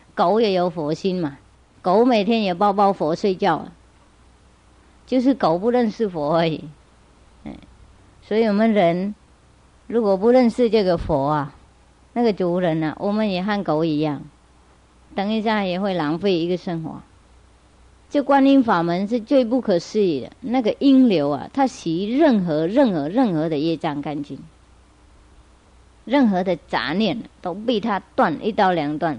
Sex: male